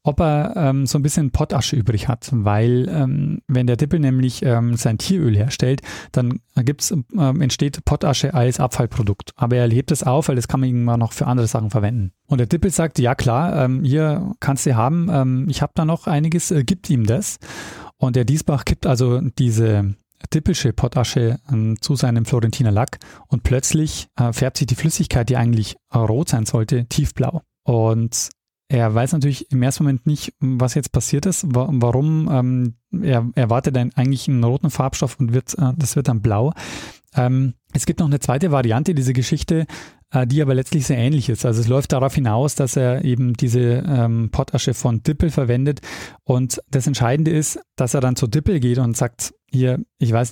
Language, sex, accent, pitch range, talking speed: German, male, German, 120-150 Hz, 195 wpm